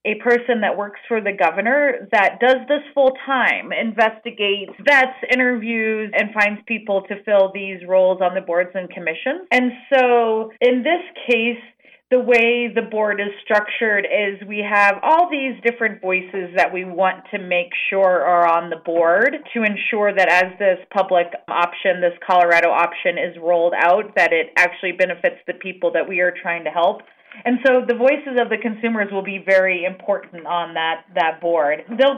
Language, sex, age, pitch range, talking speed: English, female, 30-49, 185-240 Hz, 180 wpm